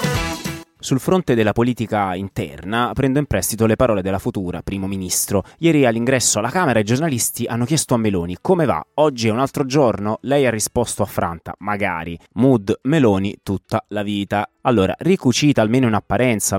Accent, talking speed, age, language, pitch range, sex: native, 165 wpm, 30-49, Italian, 95-130 Hz, male